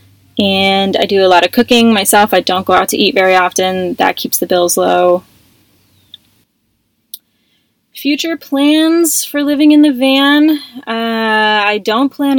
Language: English